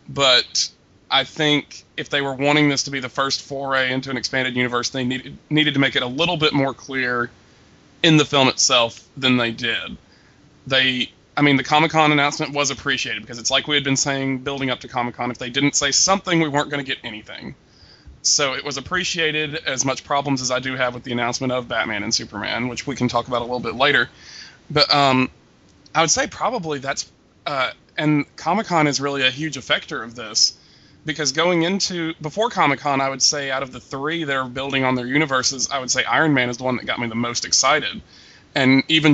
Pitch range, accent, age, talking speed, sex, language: 125-145 Hz, American, 20-39, 220 wpm, male, English